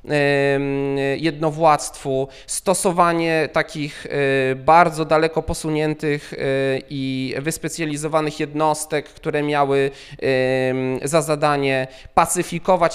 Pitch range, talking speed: 145-185 Hz, 65 wpm